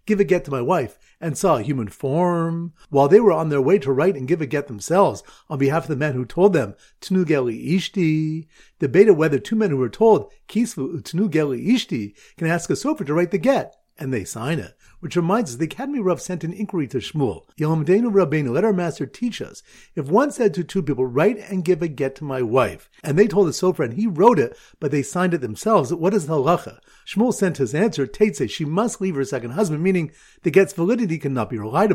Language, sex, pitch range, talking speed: English, male, 140-200 Hz, 235 wpm